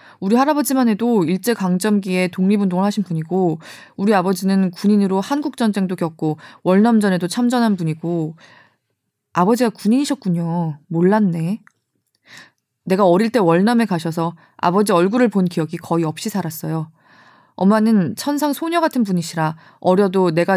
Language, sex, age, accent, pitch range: Korean, female, 20-39, native, 170-225 Hz